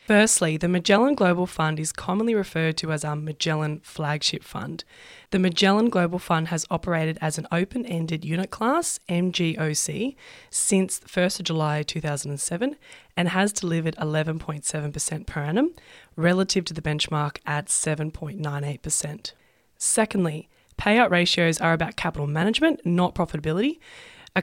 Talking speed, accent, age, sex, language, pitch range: 130 wpm, Australian, 20-39, female, English, 155-195 Hz